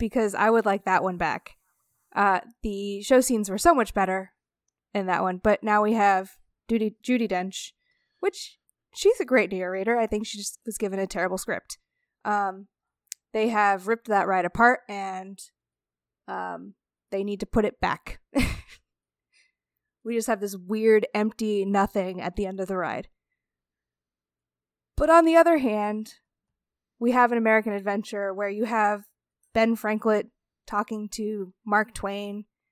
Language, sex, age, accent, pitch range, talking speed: English, female, 20-39, American, 185-220 Hz, 160 wpm